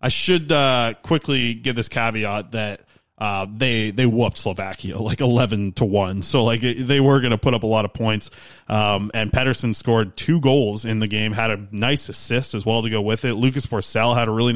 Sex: male